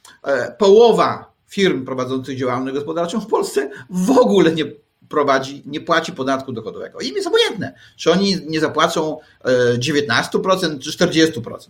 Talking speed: 125 wpm